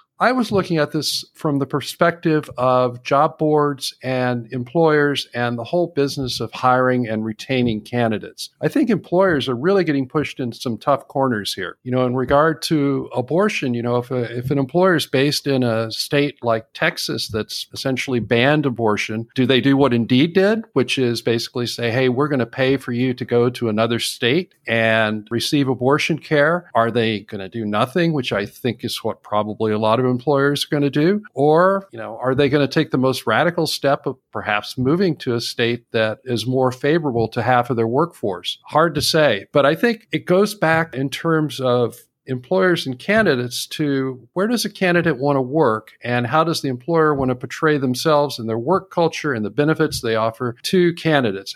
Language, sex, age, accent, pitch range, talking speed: English, male, 50-69, American, 120-150 Hz, 200 wpm